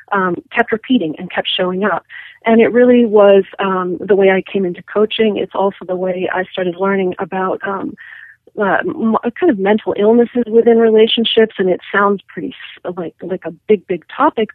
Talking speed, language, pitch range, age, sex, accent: 185 wpm, English, 185-220 Hz, 40-59, female, American